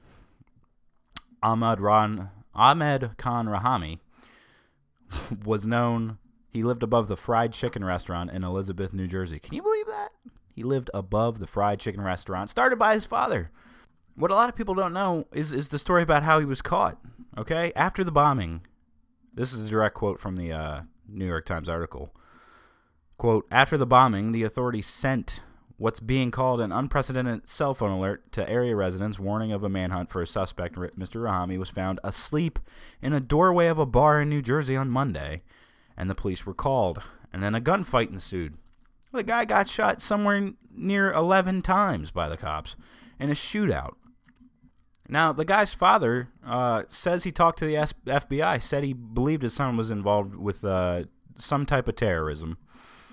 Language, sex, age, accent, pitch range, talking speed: English, male, 20-39, American, 95-145 Hz, 170 wpm